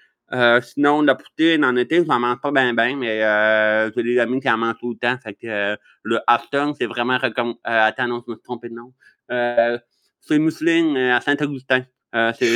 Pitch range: 120-140 Hz